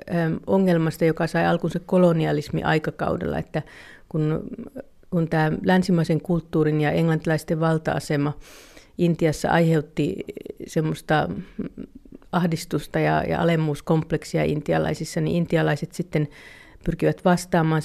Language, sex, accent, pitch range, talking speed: Finnish, female, native, 150-170 Hz, 95 wpm